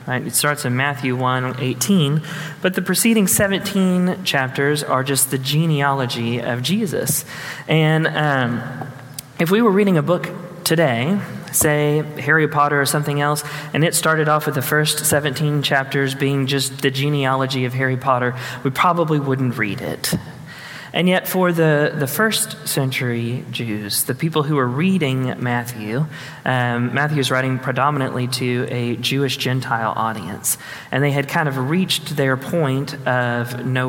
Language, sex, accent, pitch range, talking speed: English, male, American, 125-155 Hz, 155 wpm